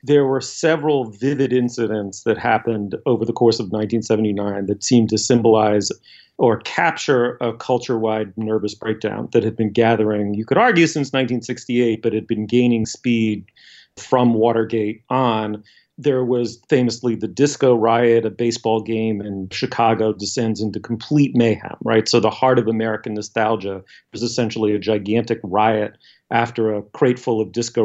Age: 40-59